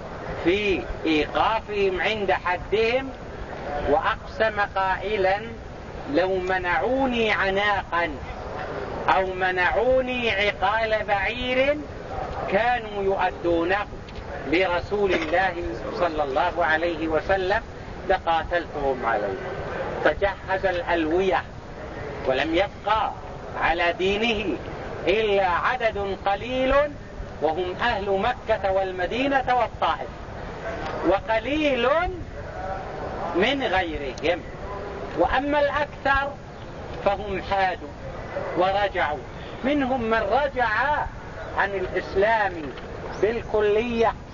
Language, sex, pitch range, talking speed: English, male, 185-250 Hz, 70 wpm